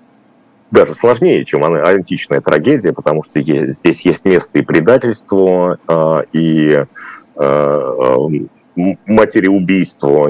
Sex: male